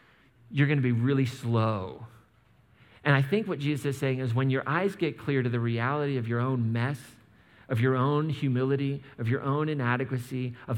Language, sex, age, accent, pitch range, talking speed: English, male, 40-59, American, 120-165 Hz, 195 wpm